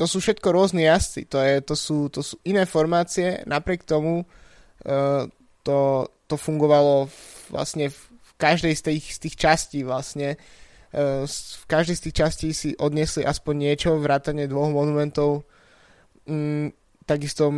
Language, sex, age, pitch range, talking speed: Slovak, male, 20-39, 140-160 Hz, 135 wpm